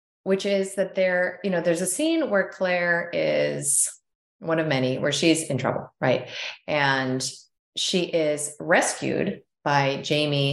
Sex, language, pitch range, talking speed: female, English, 130-175 Hz, 150 wpm